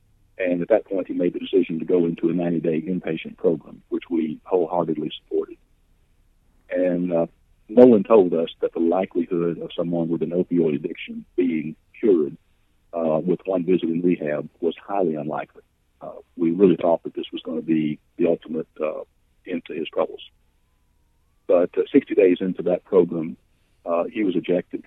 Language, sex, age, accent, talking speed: English, male, 50-69, American, 175 wpm